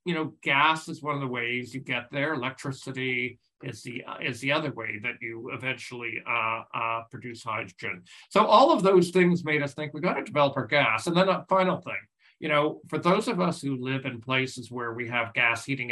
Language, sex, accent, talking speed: English, male, American, 220 wpm